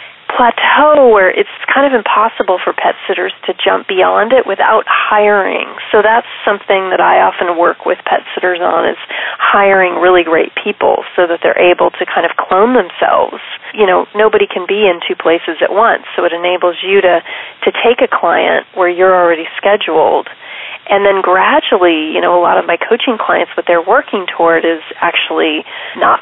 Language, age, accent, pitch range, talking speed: English, 30-49, American, 175-230 Hz, 185 wpm